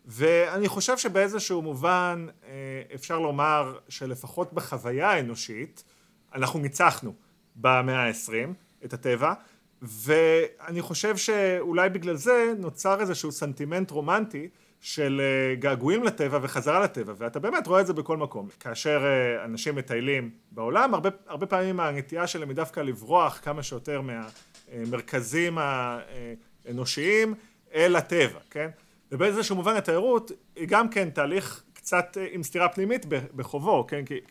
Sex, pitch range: male, 130-180 Hz